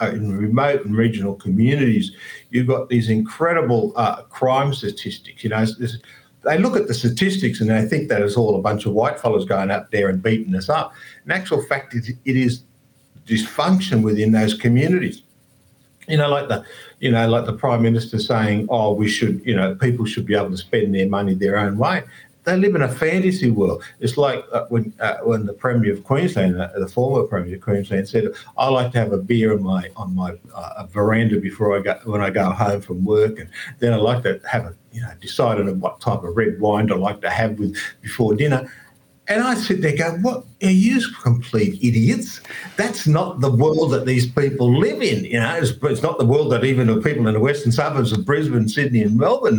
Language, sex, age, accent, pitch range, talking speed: English, male, 50-69, Australian, 105-135 Hz, 220 wpm